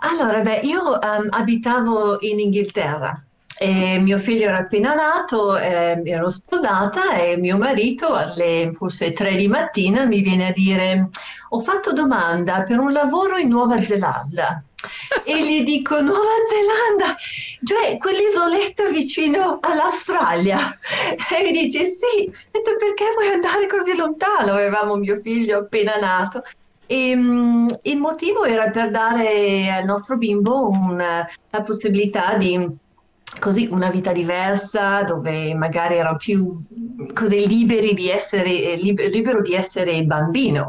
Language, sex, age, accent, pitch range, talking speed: Italian, female, 40-59, native, 175-240 Hz, 125 wpm